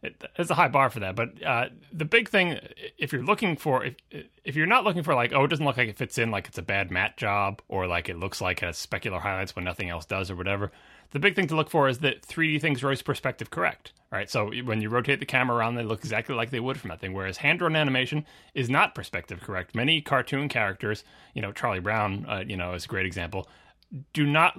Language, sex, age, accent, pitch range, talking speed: English, male, 30-49, American, 105-150 Hz, 255 wpm